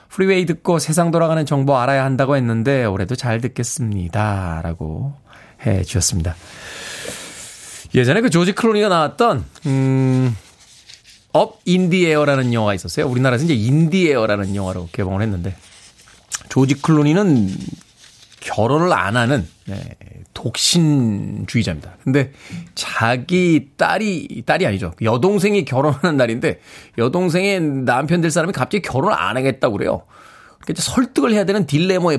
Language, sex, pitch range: Korean, male, 110-170 Hz